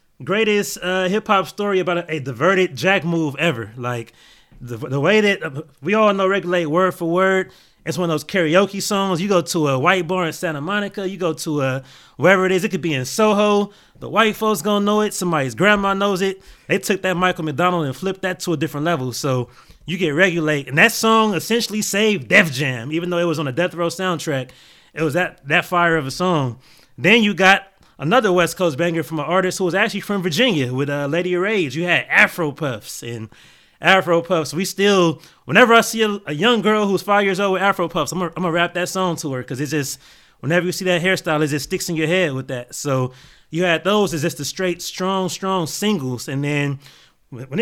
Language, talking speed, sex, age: English, 230 wpm, male, 20-39